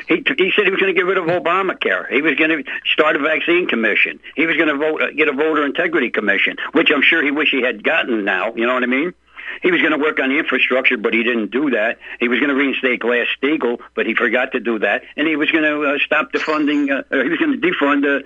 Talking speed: 275 wpm